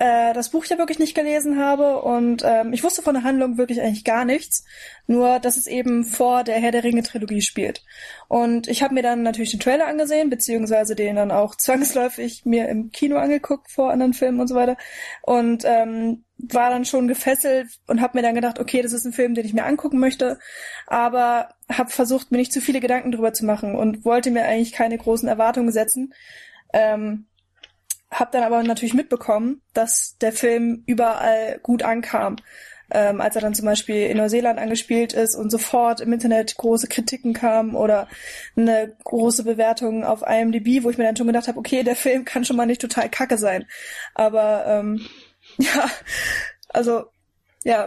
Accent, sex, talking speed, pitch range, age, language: German, female, 185 wpm, 225-255 Hz, 20-39, German